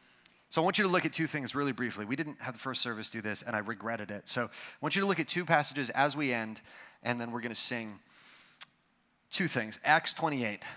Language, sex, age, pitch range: English, male, 30-49, 125-180 Hz